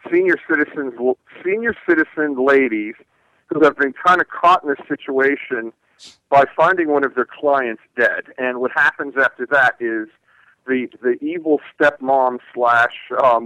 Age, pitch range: 50-69, 115-145 Hz